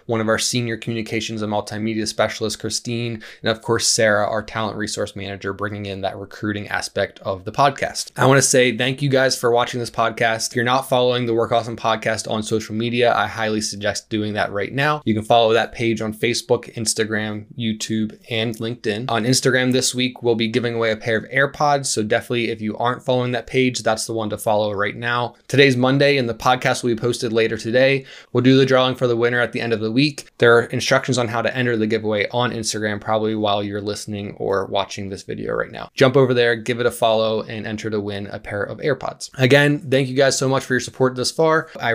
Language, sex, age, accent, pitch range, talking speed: English, male, 20-39, American, 110-125 Hz, 235 wpm